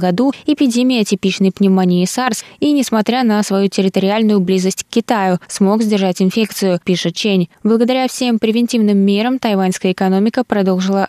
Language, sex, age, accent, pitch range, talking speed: Russian, female, 20-39, native, 185-225 Hz, 130 wpm